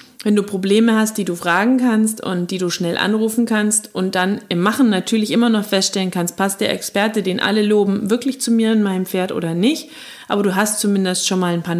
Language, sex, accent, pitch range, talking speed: German, female, German, 195-245 Hz, 230 wpm